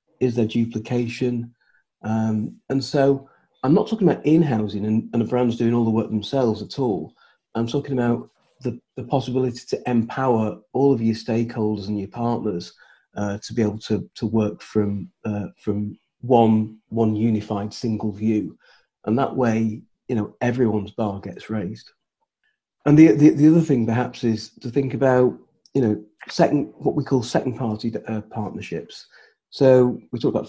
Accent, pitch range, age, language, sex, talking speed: British, 110-125 Hz, 40-59, English, male, 170 wpm